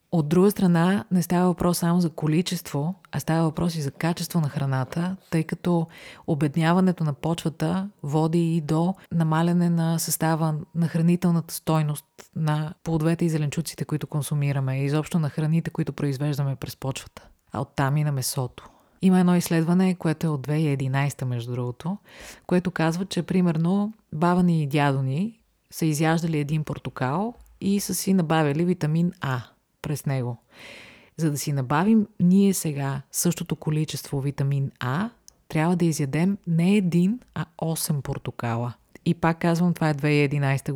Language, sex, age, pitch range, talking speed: Bulgarian, female, 30-49, 145-170 Hz, 150 wpm